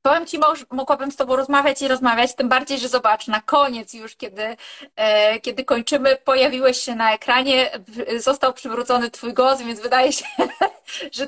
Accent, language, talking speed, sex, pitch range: native, Polish, 165 wpm, female, 230-275 Hz